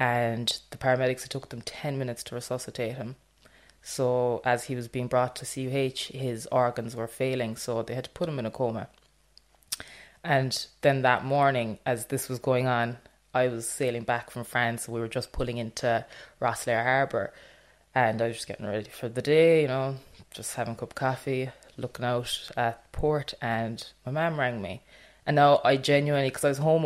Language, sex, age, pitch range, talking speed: English, female, 20-39, 120-140 Hz, 195 wpm